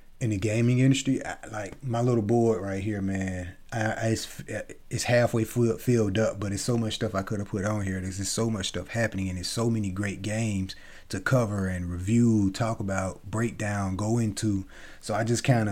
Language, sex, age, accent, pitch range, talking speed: English, male, 30-49, American, 95-115 Hz, 220 wpm